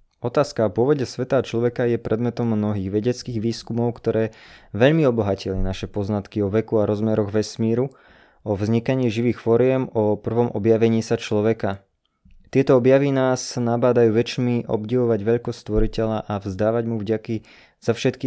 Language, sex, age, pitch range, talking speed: Slovak, male, 20-39, 105-120 Hz, 145 wpm